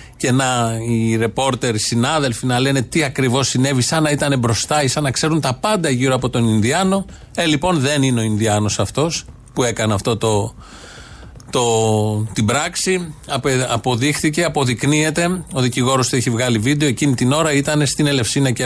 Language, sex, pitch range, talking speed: Greek, male, 120-150 Hz, 175 wpm